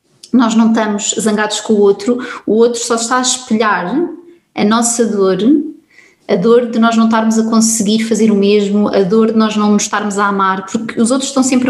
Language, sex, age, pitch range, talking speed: Portuguese, female, 20-39, 205-235 Hz, 210 wpm